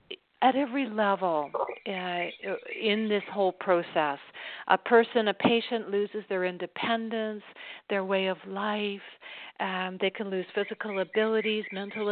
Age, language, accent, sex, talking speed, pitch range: 50-69, English, American, female, 130 wpm, 190-240 Hz